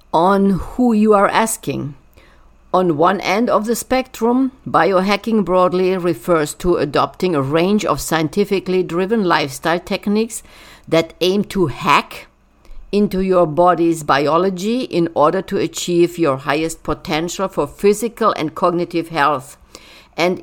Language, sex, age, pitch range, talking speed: English, female, 50-69, 160-190 Hz, 130 wpm